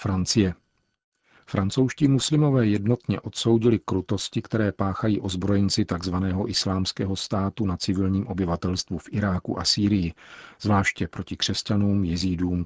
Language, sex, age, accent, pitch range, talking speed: Czech, male, 40-59, native, 90-105 Hz, 110 wpm